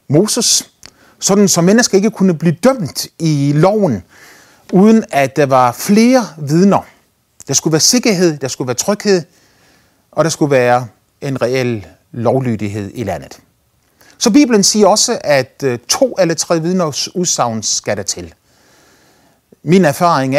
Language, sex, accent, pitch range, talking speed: Danish, male, native, 115-180 Hz, 140 wpm